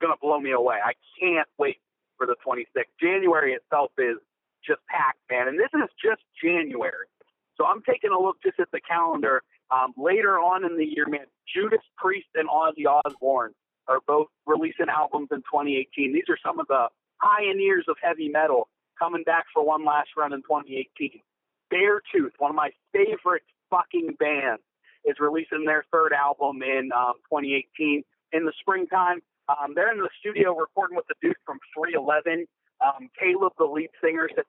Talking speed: 175 wpm